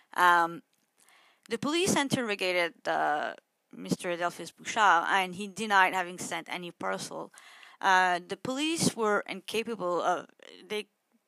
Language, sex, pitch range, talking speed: English, female, 175-230 Hz, 115 wpm